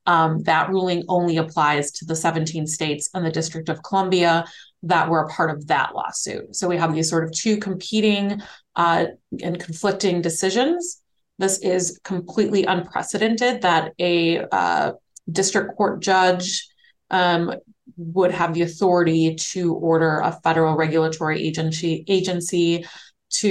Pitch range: 160-185 Hz